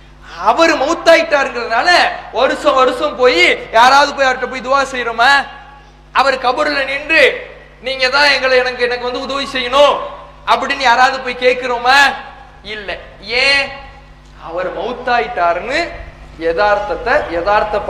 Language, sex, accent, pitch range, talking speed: English, male, Indian, 245-320 Hz, 80 wpm